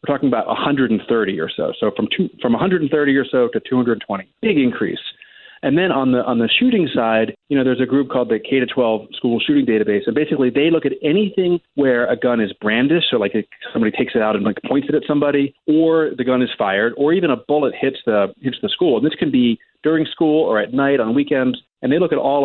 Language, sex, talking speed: English, male, 240 wpm